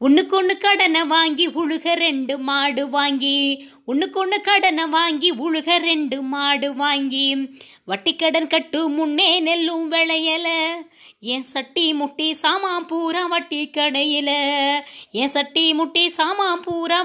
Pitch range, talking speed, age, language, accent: 290-345 Hz, 120 wpm, 20-39, Tamil, native